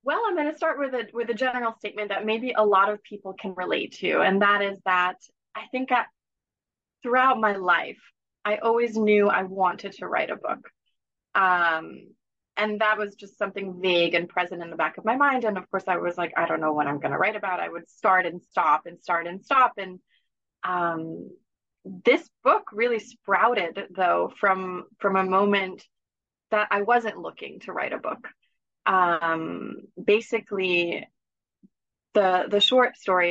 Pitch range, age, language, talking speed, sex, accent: 175-215 Hz, 20-39, English, 185 wpm, female, American